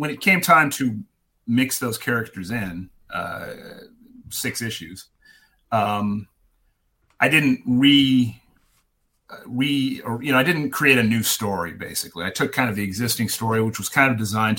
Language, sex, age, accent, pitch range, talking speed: English, male, 40-59, American, 105-135 Hz, 155 wpm